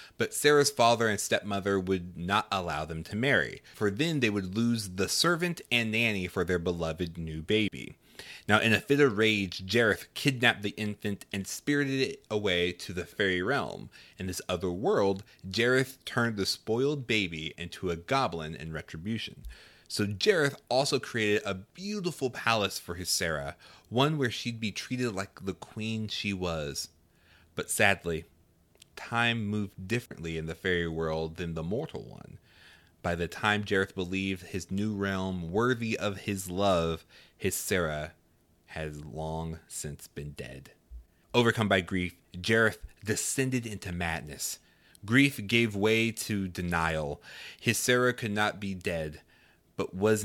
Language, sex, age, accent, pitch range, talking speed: English, male, 30-49, American, 85-110 Hz, 155 wpm